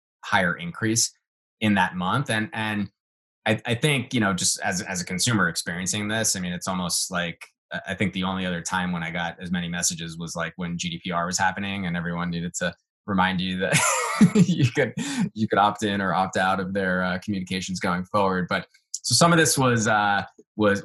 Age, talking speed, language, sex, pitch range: 20-39, 205 wpm, English, male, 90-115 Hz